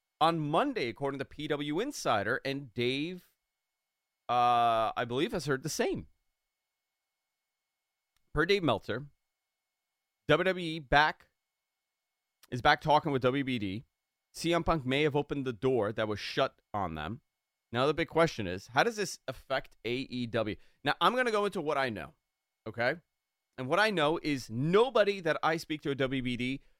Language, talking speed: English, 155 wpm